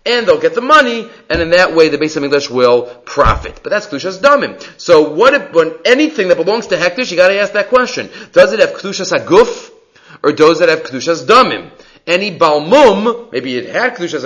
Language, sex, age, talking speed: English, male, 40-59, 215 wpm